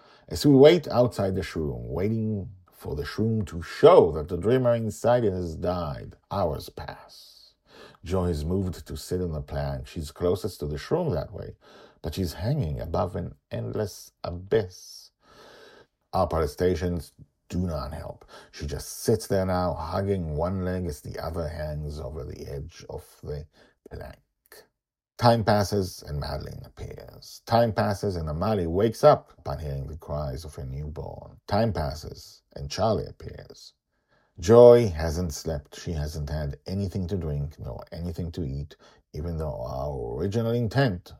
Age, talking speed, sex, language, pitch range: 50-69, 155 wpm, male, English, 75-105 Hz